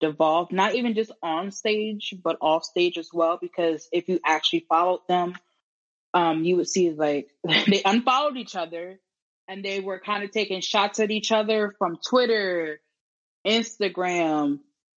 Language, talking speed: English, 155 wpm